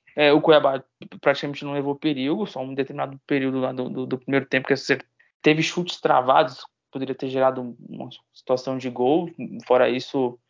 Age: 20-39